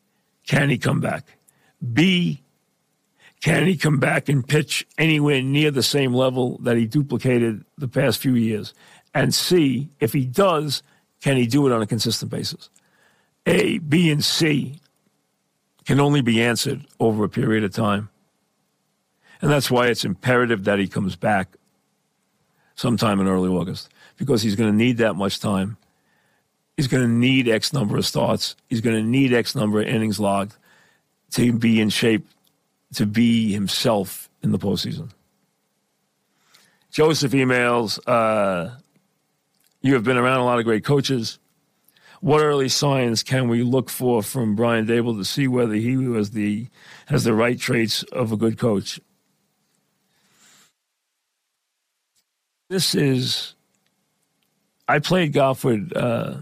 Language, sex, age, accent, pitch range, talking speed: English, male, 50-69, American, 115-145 Hz, 145 wpm